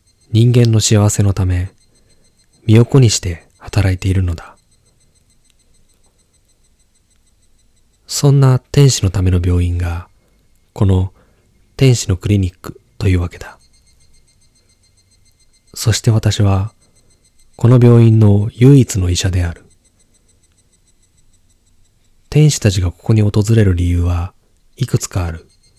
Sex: male